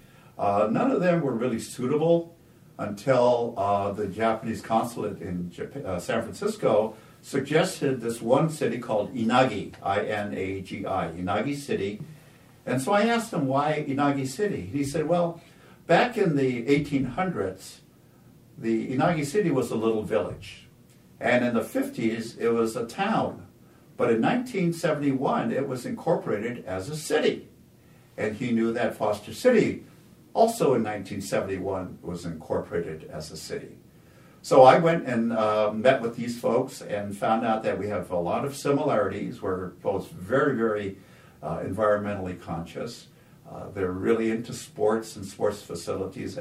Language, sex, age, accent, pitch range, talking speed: English, male, 60-79, American, 105-150 Hz, 145 wpm